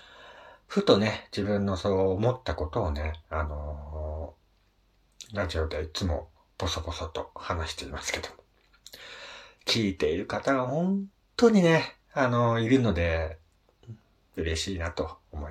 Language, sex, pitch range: Japanese, male, 85-125 Hz